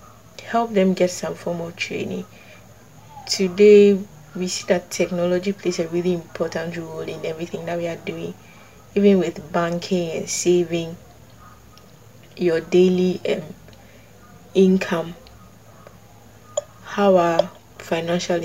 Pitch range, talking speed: 160-185 Hz, 115 wpm